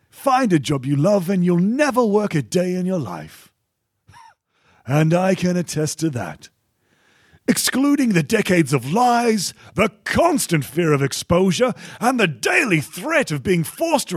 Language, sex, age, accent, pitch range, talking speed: English, male, 40-59, British, 155-240 Hz, 160 wpm